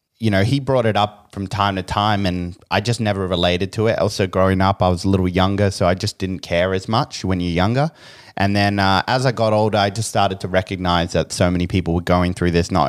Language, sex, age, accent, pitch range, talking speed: English, male, 20-39, Australian, 90-105 Hz, 260 wpm